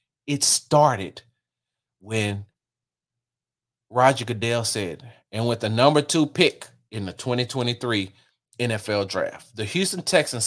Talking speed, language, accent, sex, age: 115 wpm, English, American, male, 30-49